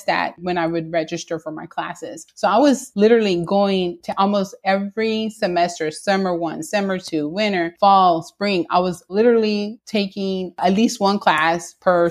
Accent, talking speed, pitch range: American, 165 wpm, 170-200 Hz